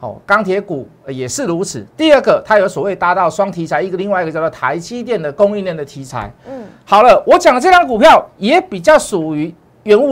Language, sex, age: Chinese, male, 50-69